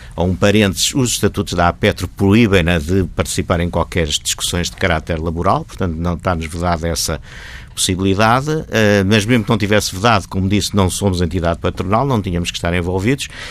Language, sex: Portuguese, male